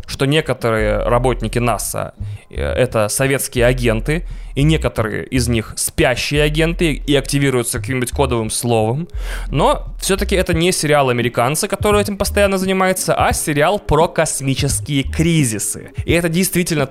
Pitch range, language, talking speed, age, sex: 120-160 Hz, Russian, 130 wpm, 20-39, male